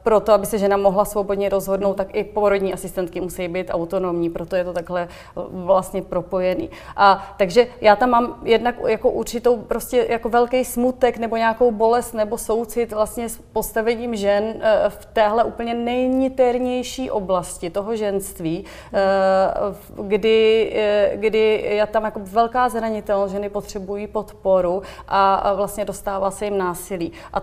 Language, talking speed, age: Czech, 140 wpm, 30-49